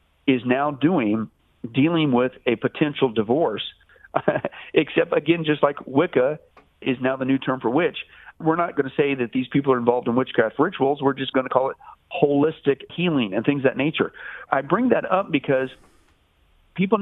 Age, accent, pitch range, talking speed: 50-69, American, 135-200 Hz, 185 wpm